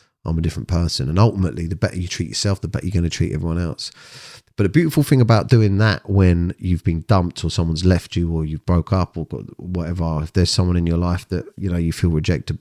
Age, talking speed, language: 30-49, 250 wpm, English